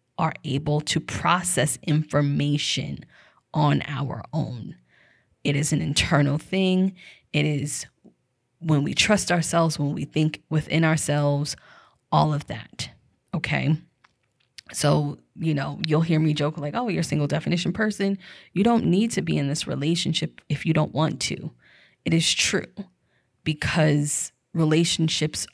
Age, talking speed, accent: 20-39, 140 wpm, American